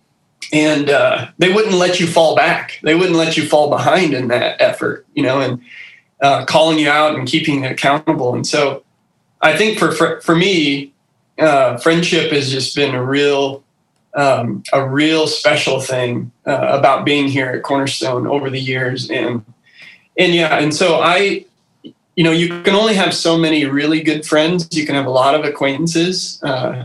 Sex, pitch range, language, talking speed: male, 135-160 Hz, English, 185 wpm